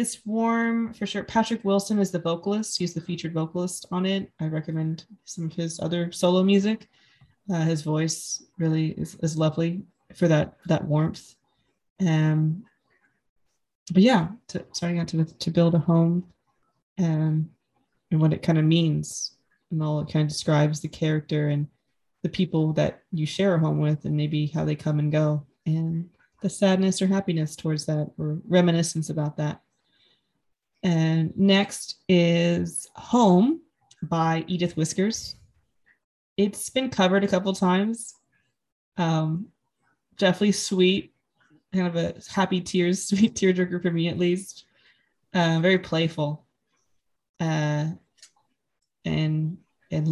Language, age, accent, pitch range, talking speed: English, 20-39, American, 155-185 Hz, 145 wpm